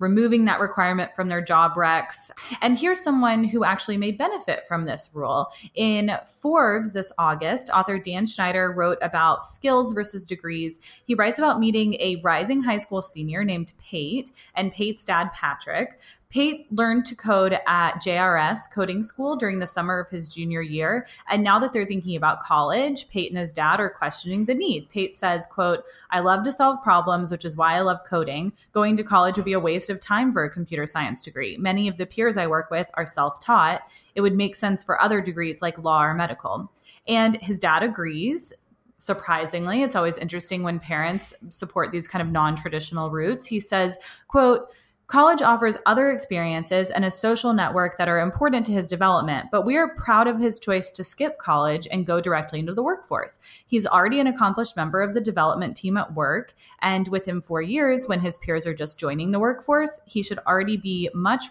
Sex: female